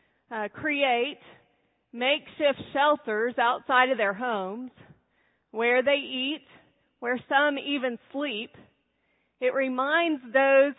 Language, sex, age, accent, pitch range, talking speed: English, female, 40-59, American, 230-280 Hz, 100 wpm